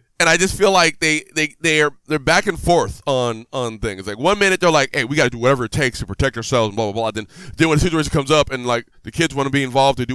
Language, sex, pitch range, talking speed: English, male, 115-155 Hz, 315 wpm